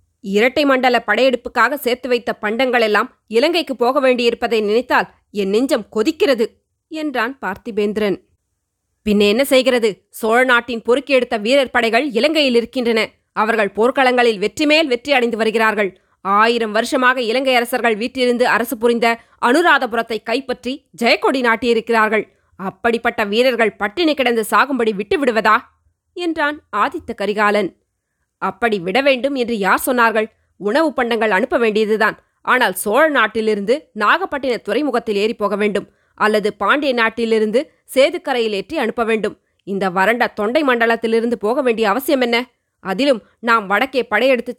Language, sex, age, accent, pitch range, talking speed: Tamil, female, 20-39, native, 215-260 Hz, 120 wpm